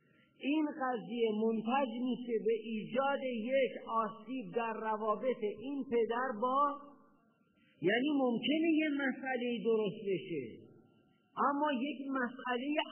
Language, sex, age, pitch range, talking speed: Persian, male, 50-69, 180-255 Hz, 100 wpm